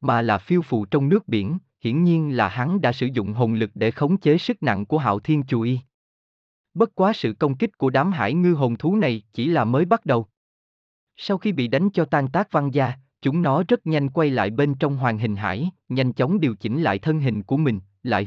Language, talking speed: Vietnamese, 235 wpm